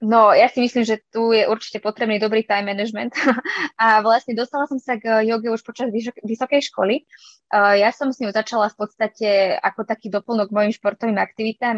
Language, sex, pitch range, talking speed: Czech, female, 200-230 Hz, 200 wpm